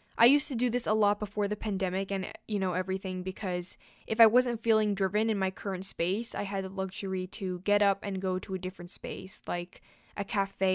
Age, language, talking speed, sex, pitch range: 10-29, English, 225 wpm, female, 185-215 Hz